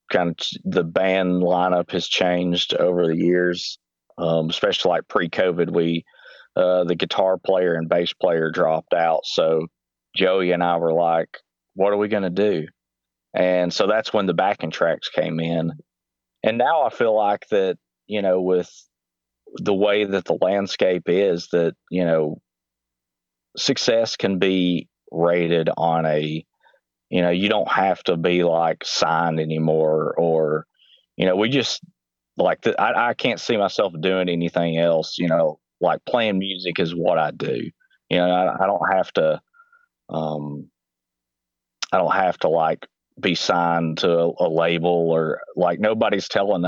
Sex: male